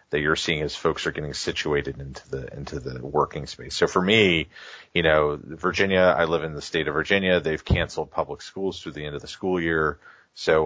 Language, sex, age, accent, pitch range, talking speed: English, male, 30-49, American, 75-85 Hz, 220 wpm